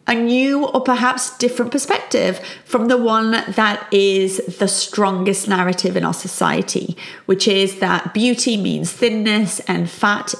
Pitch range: 200-260 Hz